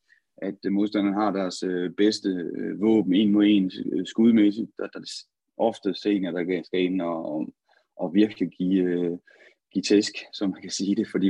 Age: 30-49